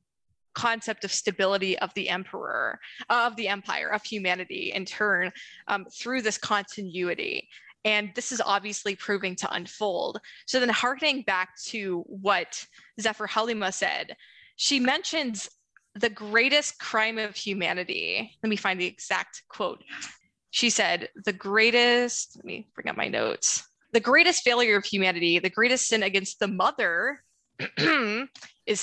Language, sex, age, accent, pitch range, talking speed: English, female, 20-39, American, 200-250 Hz, 140 wpm